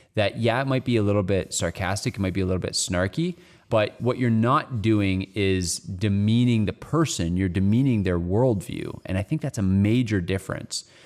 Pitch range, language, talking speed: 90-115 Hz, English, 195 wpm